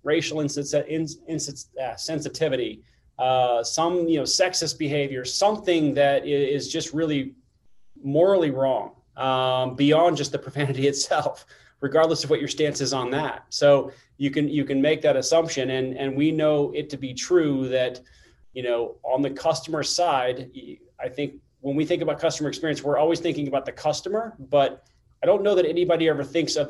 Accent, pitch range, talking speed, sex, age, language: American, 130-160 Hz, 170 wpm, male, 30-49, English